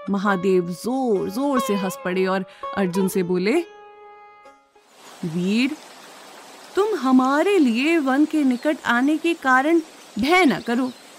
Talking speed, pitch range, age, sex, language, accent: 125 wpm, 205-300 Hz, 30-49, female, Hindi, native